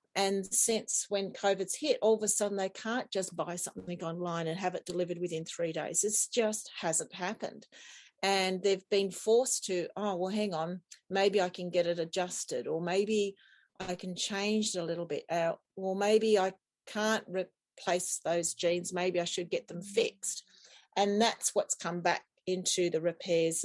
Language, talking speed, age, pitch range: English, 185 wpm, 40-59, 170-200 Hz